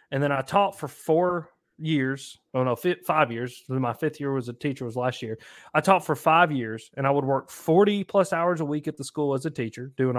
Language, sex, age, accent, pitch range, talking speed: English, male, 30-49, American, 125-155 Hz, 240 wpm